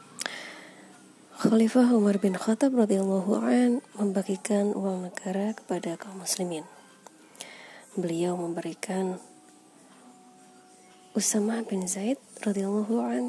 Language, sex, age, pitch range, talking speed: Indonesian, female, 20-39, 190-225 Hz, 75 wpm